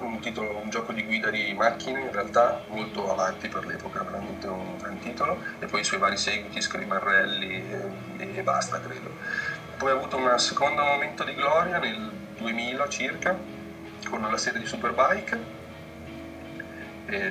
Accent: native